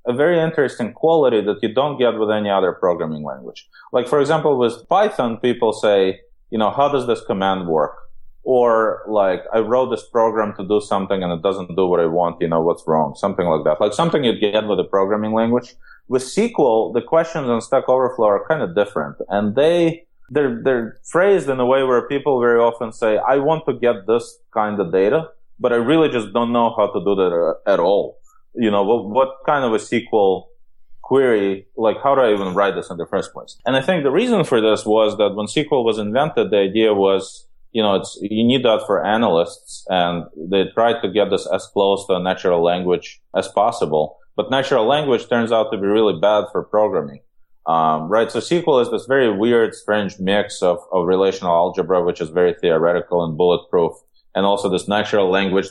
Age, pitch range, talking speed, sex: 20-39, 95-135 Hz, 215 wpm, male